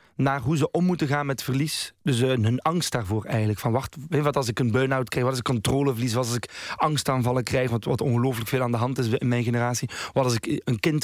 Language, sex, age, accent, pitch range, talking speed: Dutch, male, 30-49, Dutch, 120-150 Hz, 260 wpm